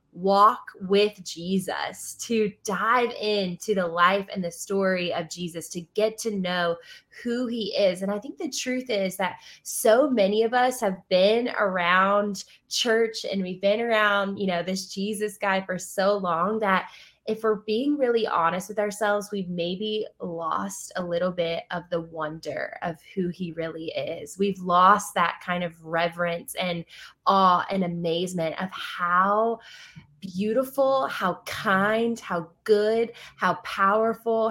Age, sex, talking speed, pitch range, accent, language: 20-39, female, 155 wpm, 175-215 Hz, American, English